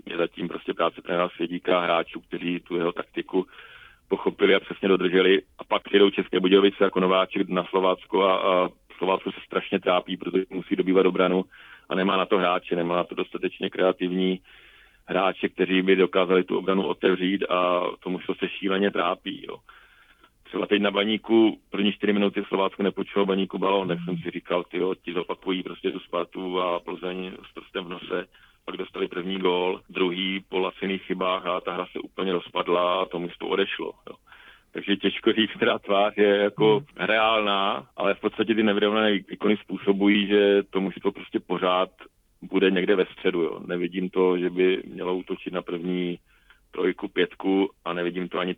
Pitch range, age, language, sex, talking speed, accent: 90-100 Hz, 40-59, Czech, male, 170 wpm, native